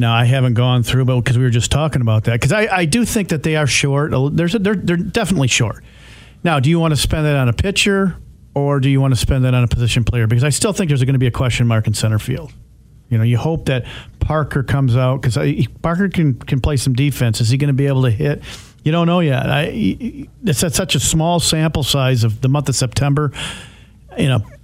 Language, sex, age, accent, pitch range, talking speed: English, male, 50-69, American, 125-150 Hz, 255 wpm